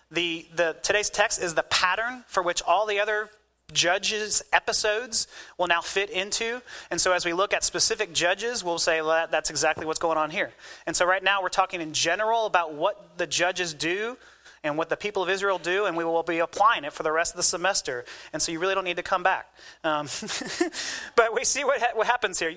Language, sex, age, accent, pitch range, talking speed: English, male, 30-49, American, 165-210 Hz, 230 wpm